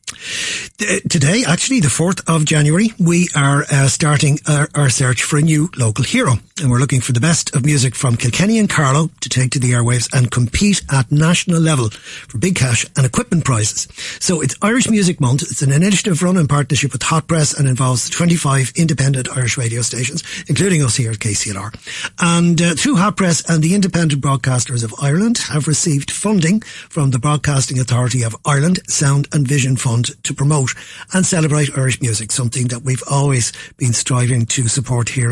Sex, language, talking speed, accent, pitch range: male, English, 190 wpm, Irish, 130-175 Hz